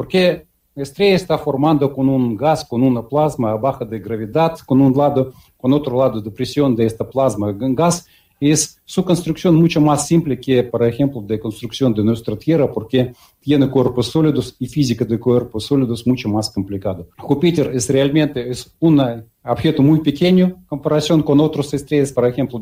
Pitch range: 120-155 Hz